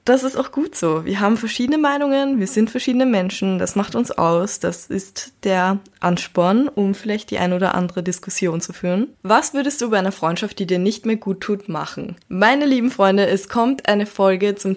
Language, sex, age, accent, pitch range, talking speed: German, female, 20-39, German, 185-225 Hz, 205 wpm